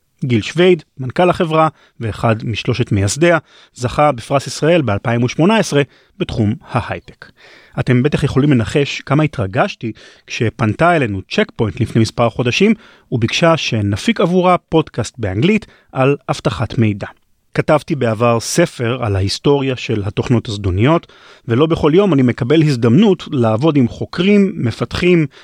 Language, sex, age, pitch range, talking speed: Hebrew, male, 30-49, 115-170 Hz, 125 wpm